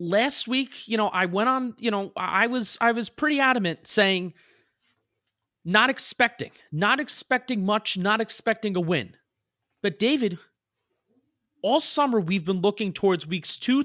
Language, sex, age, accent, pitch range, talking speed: English, male, 30-49, American, 170-230 Hz, 150 wpm